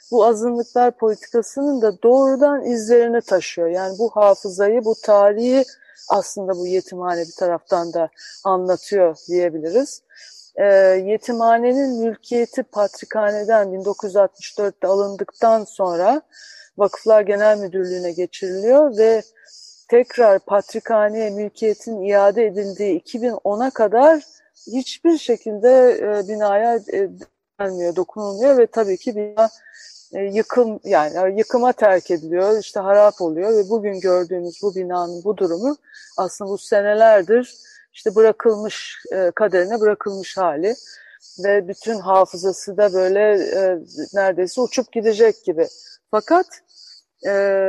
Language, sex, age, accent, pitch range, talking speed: Turkish, female, 40-59, native, 190-240 Hz, 105 wpm